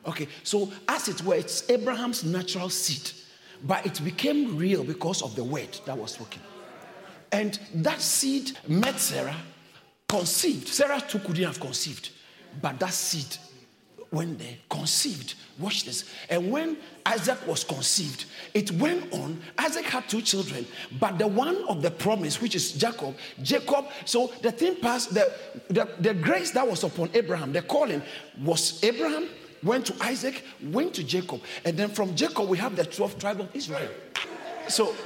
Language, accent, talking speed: English, Nigerian, 165 wpm